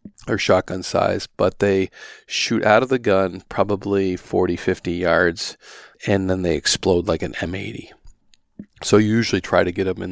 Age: 40-59